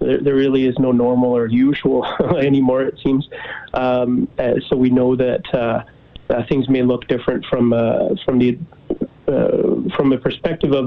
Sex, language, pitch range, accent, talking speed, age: male, English, 120-130 Hz, American, 165 wpm, 30-49